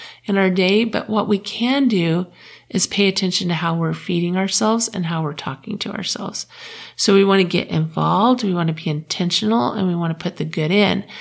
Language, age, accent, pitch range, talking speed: English, 40-59, American, 175-205 Hz, 220 wpm